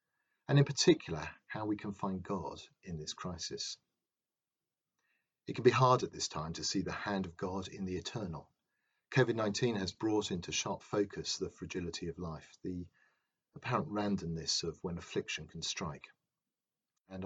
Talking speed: 160 wpm